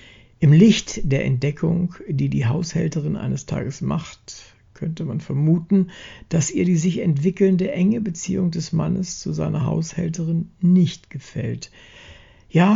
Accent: German